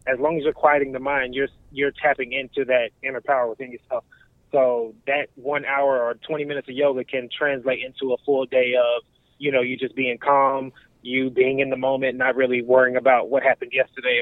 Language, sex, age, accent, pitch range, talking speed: English, male, 20-39, American, 125-150 Hz, 210 wpm